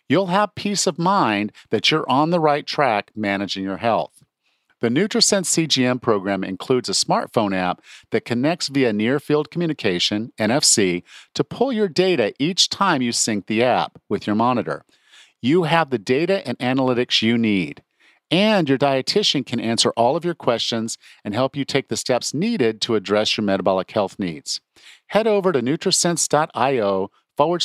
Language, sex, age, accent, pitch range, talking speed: English, male, 50-69, American, 110-165 Hz, 165 wpm